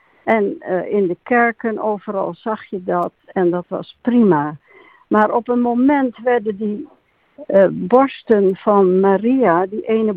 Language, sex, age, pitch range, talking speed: Dutch, female, 60-79, 185-235 Hz, 150 wpm